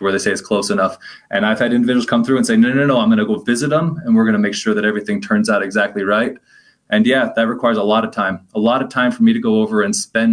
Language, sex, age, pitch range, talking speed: English, male, 20-39, 110-165 Hz, 300 wpm